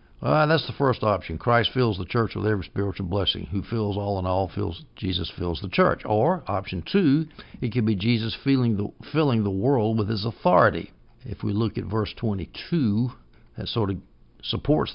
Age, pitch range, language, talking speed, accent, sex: 60-79, 95-120 Hz, English, 195 wpm, American, male